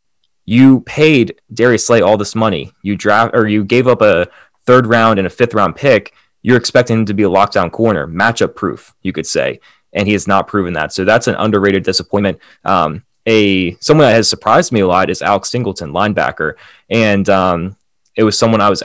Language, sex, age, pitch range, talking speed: English, male, 20-39, 95-110 Hz, 205 wpm